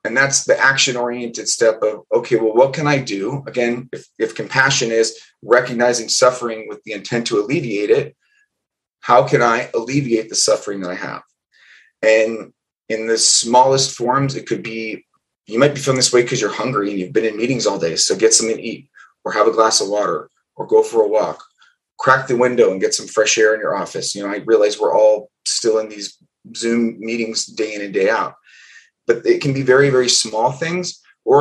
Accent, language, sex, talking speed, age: American, English, male, 210 wpm, 30-49